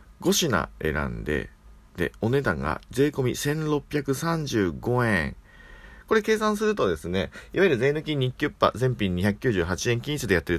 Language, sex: Japanese, male